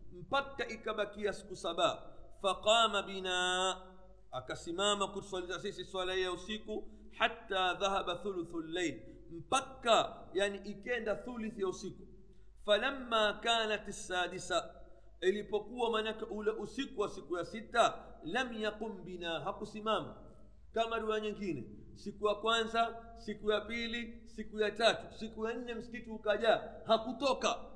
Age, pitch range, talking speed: 50-69, 190-230 Hz, 115 wpm